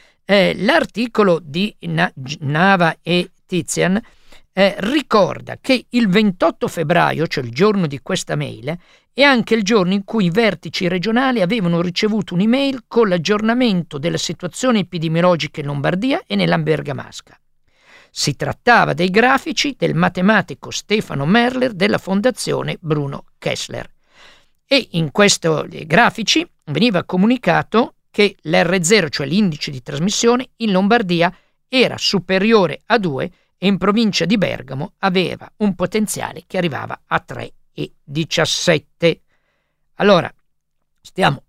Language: Italian